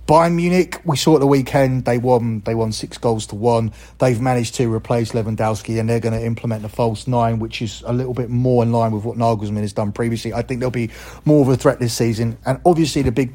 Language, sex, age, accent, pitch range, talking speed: English, male, 30-49, British, 115-130 Hz, 250 wpm